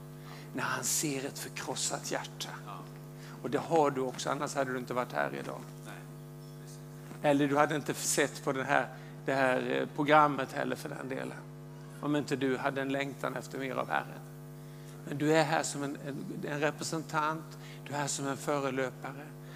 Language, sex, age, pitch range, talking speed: English, male, 60-79, 145-160 Hz, 170 wpm